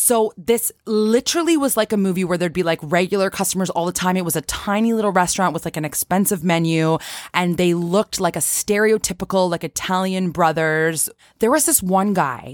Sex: female